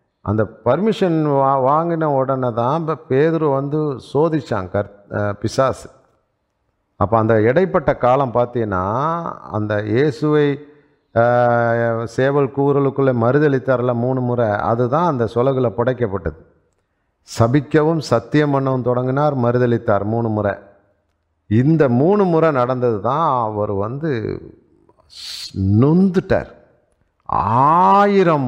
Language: Tamil